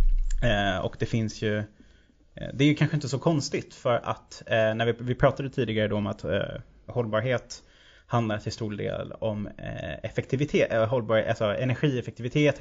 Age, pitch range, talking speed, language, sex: 20-39, 105-125 Hz, 175 wpm, Swedish, male